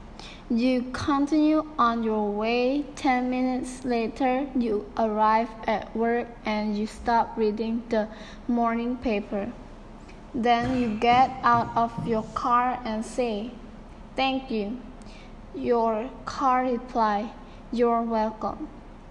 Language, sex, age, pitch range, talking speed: English, female, 10-29, 230-265 Hz, 110 wpm